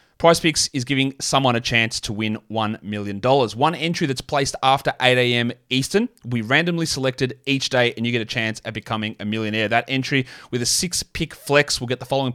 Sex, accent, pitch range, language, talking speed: male, Australian, 120-150 Hz, English, 220 wpm